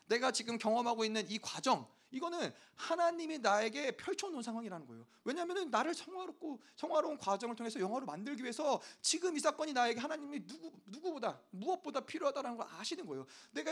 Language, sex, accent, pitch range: Korean, male, native, 230-305 Hz